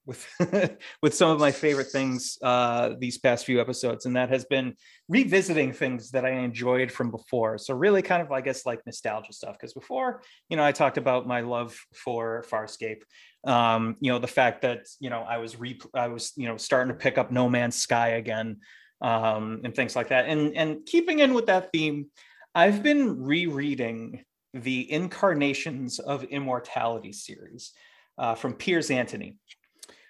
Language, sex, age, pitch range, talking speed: English, male, 30-49, 120-165 Hz, 180 wpm